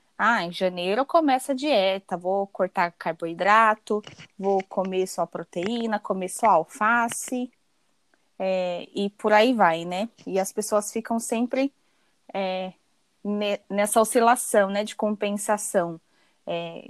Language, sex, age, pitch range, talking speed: Portuguese, female, 20-39, 195-240 Hz, 130 wpm